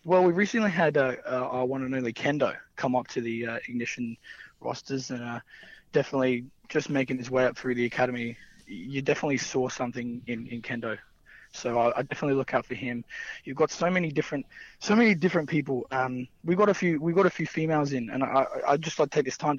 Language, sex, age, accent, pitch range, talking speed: English, male, 20-39, Australian, 125-160 Hz, 220 wpm